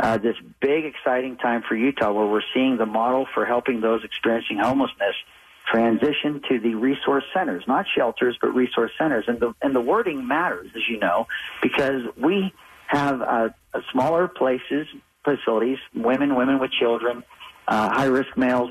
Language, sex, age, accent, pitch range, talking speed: English, male, 50-69, American, 120-150 Hz, 165 wpm